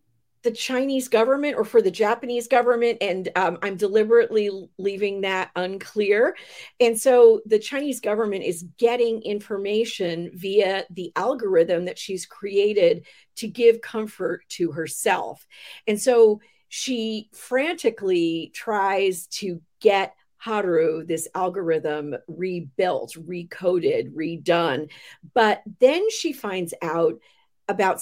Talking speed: 115 wpm